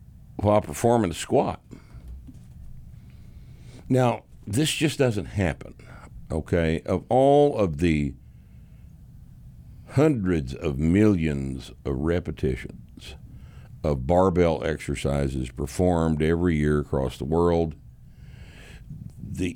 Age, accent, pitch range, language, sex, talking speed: 60-79, American, 75-95 Hz, English, male, 90 wpm